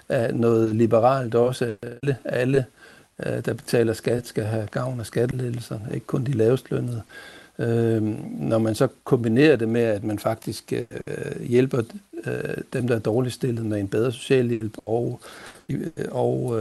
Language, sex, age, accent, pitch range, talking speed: Danish, male, 60-79, native, 110-130 Hz, 145 wpm